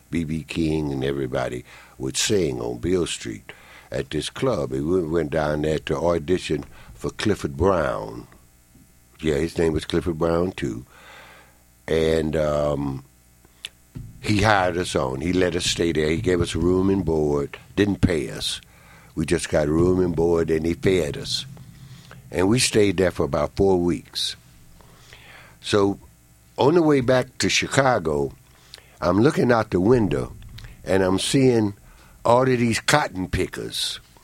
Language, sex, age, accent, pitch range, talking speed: English, male, 60-79, American, 70-105 Hz, 150 wpm